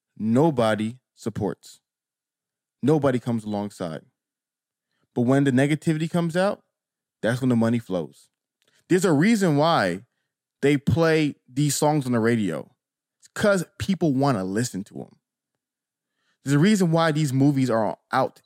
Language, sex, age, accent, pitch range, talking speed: English, male, 20-39, American, 110-150 Hz, 135 wpm